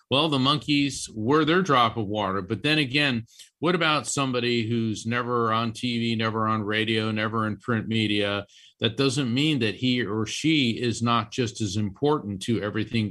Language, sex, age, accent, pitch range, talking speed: English, male, 50-69, American, 105-130 Hz, 180 wpm